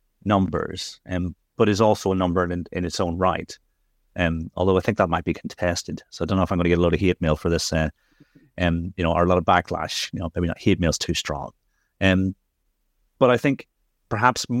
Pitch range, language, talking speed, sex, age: 90-110 Hz, English, 245 wpm, male, 30-49